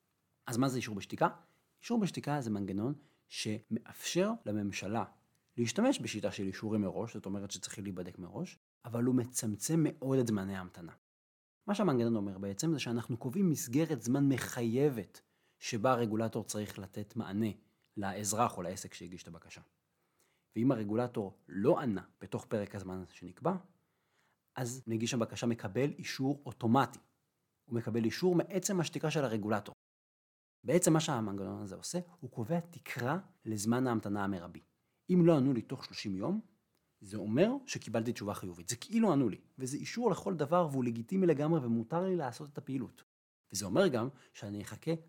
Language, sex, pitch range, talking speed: Hebrew, male, 105-155 Hz, 150 wpm